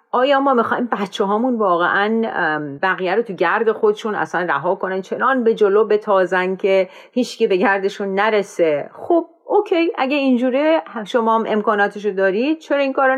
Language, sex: Persian, female